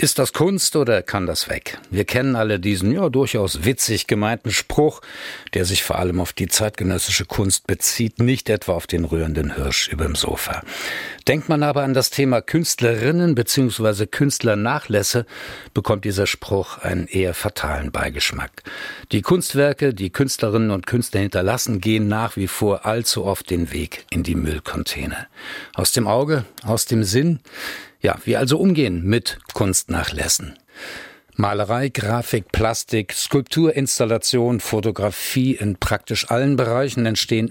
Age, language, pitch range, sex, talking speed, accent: 60-79, German, 100-130 Hz, male, 145 wpm, German